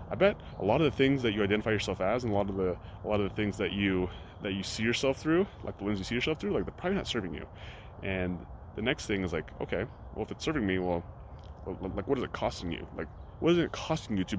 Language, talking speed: English, 285 wpm